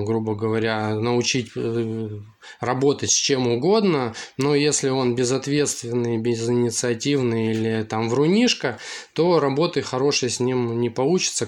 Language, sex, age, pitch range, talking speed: Russian, male, 20-39, 120-145 Hz, 115 wpm